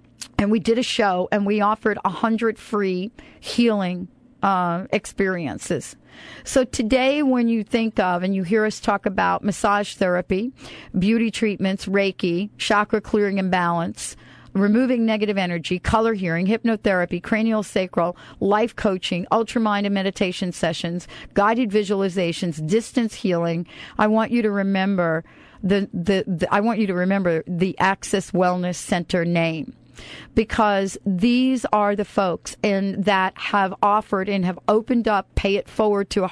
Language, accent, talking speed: English, American, 145 wpm